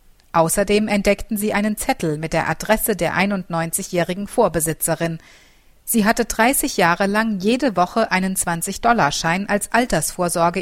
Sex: female